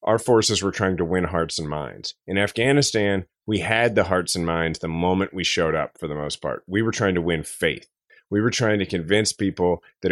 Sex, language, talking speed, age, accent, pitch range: male, English, 230 wpm, 30-49, American, 95-115 Hz